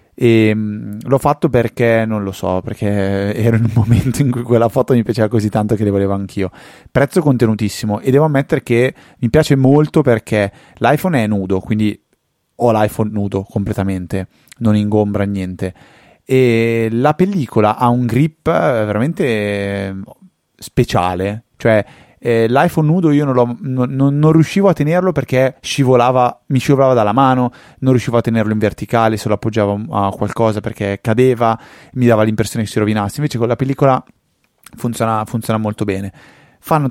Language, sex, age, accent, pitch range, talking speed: Italian, male, 20-39, native, 105-130 Hz, 160 wpm